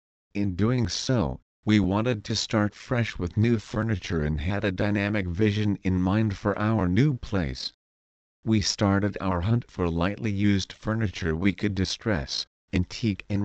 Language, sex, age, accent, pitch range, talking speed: English, male, 40-59, American, 90-110 Hz, 155 wpm